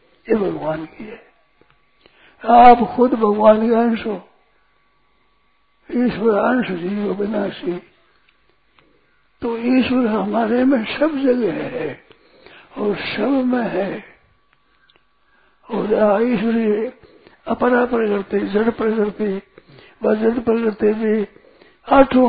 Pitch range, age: 205-235 Hz, 60-79